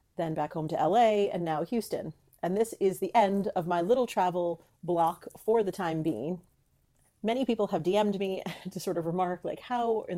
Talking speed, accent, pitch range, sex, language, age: 200 wpm, American, 170-220 Hz, female, English, 40-59